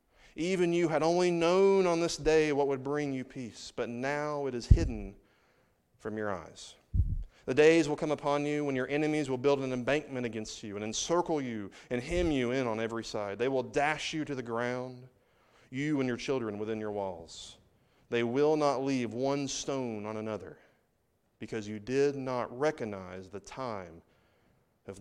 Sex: male